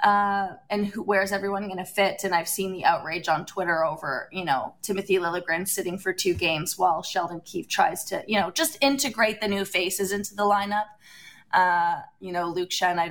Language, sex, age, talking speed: English, female, 20-39, 195 wpm